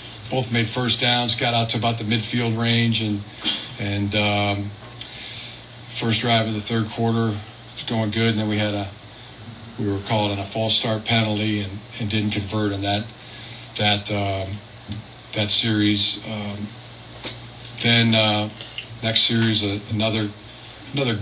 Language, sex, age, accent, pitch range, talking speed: English, male, 40-59, American, 105-115 Hz, 155 wpm